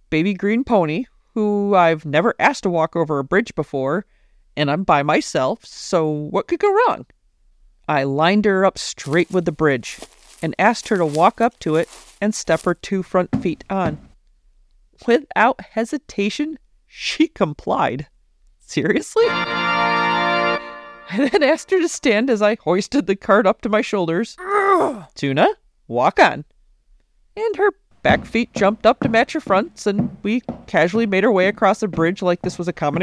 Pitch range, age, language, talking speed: 165-230 Hz, 40-59, English, 165 wpm